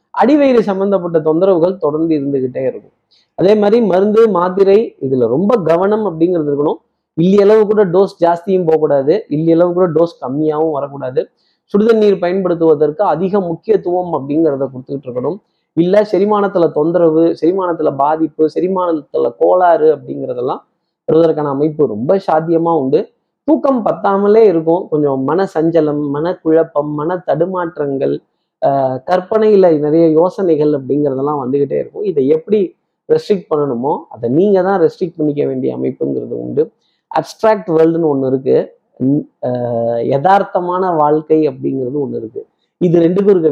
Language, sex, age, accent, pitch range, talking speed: Tamil, male, 20-39, native, 150-195 Hz, 115 wpm